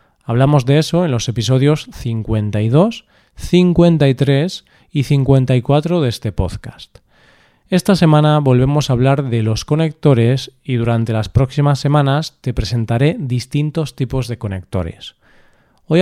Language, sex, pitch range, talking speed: Spanish, male, 115-150 Hz, 125 wpm